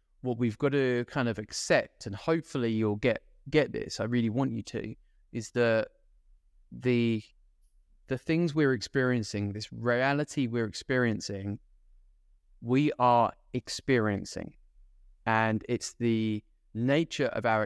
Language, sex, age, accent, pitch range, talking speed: English, male, 20-39, British, 100-125 Hz, 130 wpm